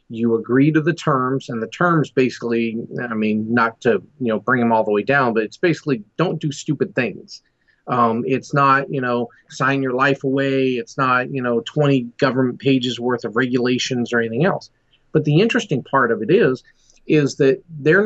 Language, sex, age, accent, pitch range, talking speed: English, male, 40-59, American, 120-145 Hz, 200 wpm